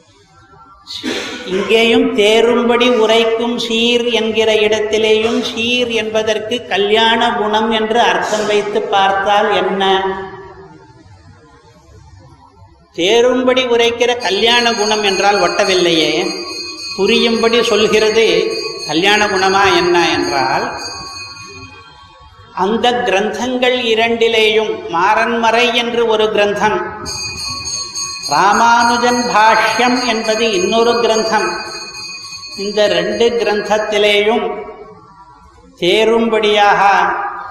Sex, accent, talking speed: male, native, 70 wpm